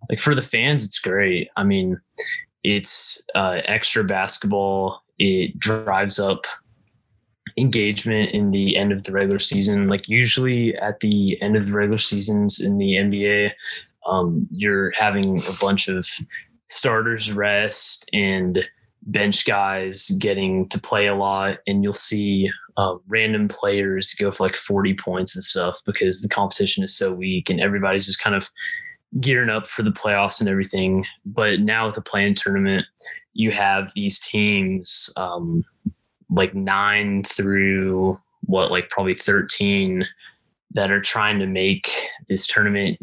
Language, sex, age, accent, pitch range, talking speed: English, male, 20-39, American, 95-110 Hz, 150 wpm